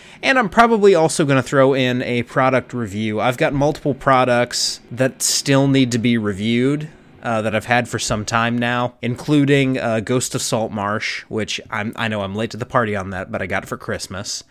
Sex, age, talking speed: male, 30-49, 205 wpm